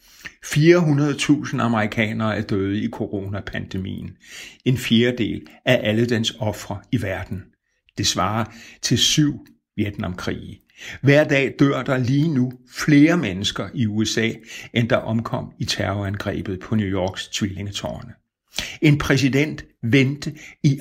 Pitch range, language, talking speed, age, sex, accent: 105-130 Hz, Danish, 120 wpm, 60-79, male, native